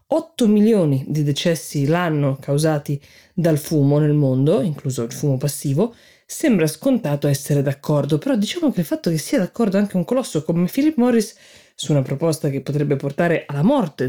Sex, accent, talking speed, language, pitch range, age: female, native, 170 wpm, Italian, 145-200 Hz, 20-39